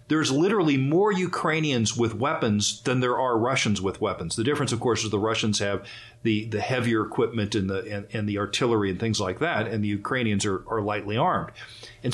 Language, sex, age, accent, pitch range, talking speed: English, male, 40-59, American, 110-130 Hz, 210 wpm